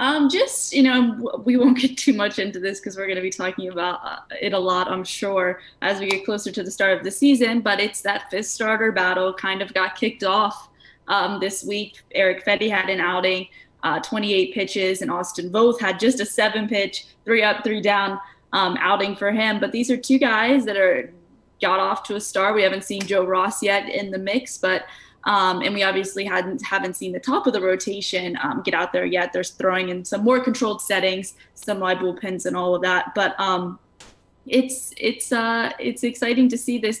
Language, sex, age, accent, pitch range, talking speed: English, female, 10-29, American, 190-235 Hz, 215 wpm